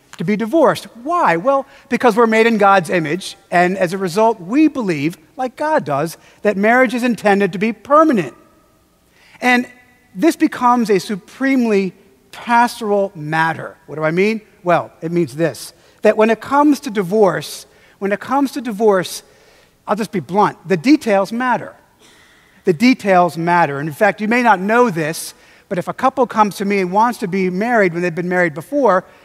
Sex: male